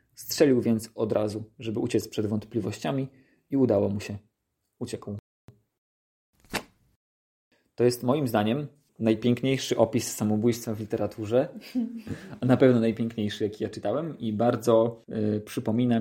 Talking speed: 125 wpm